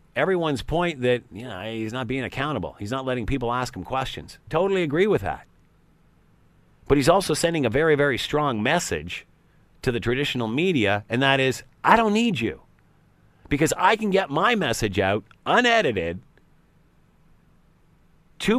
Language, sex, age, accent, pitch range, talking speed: English, male, 40-59, American, 125-175 Hz, 160 wpm